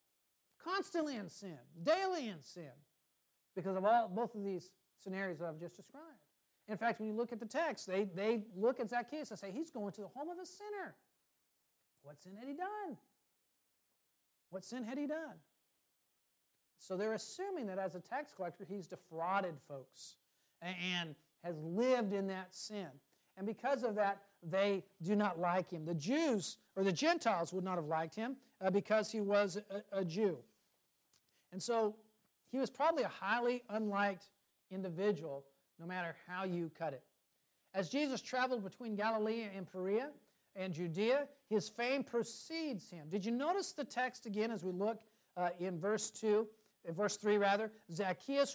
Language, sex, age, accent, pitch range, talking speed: English, male, 50-69, American, 180-240 Hz, 170 wpm